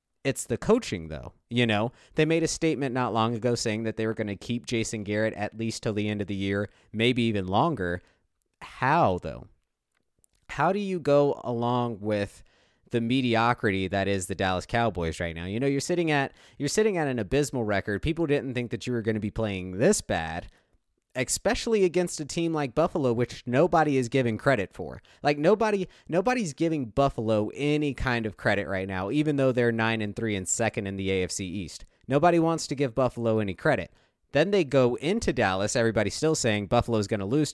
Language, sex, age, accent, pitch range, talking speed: English, male, 30-49, American, 105-145 Hz, 205 wpm